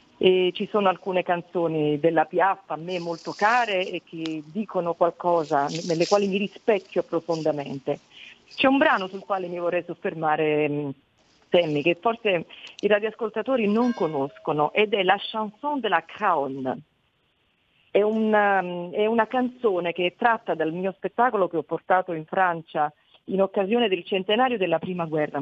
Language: Italian